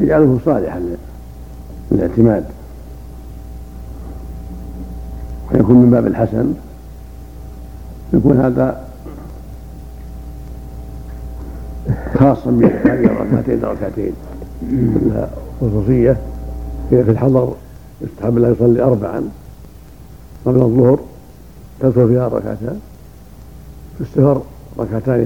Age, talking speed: 70-89, 70 wpm